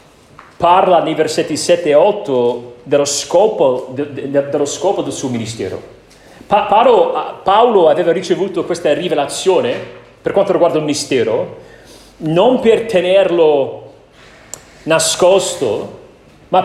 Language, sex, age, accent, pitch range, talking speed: Italian, male, 40-59, native, 170-230 Hz, 105 wpm